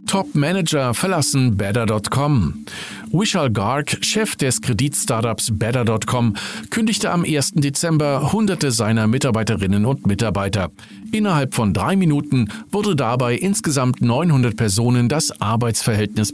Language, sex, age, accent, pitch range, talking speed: German, male, 50-69, German, 110-155 Hz, 110 wpm